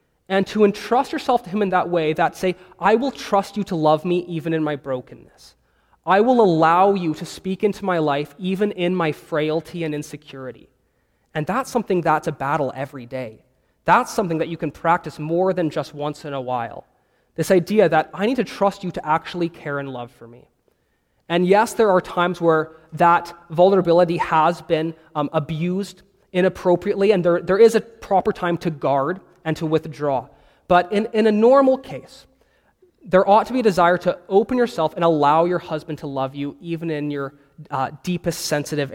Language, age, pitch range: English, 20-39, 155-190 Hz